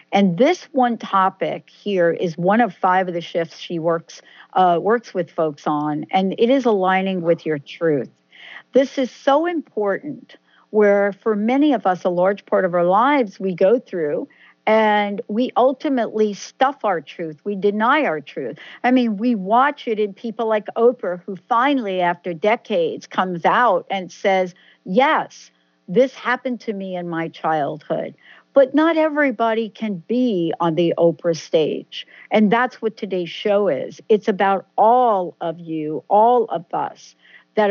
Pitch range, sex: 175-235 Hz, female